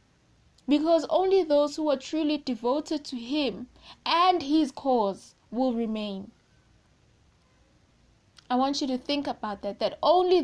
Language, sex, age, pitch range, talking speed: English, female, 20-39, 210-270 Hz, 130 wpm